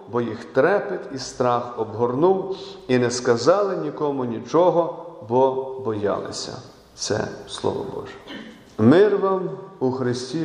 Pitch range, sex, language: 120-145 Hz, male, Ukrainian